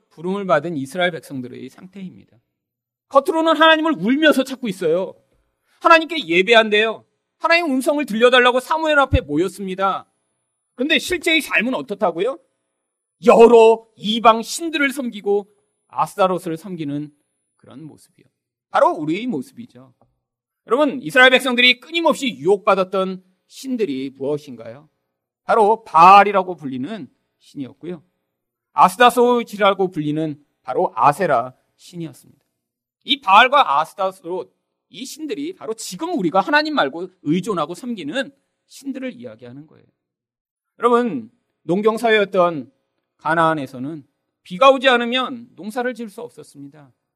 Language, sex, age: Korean, male, 40-59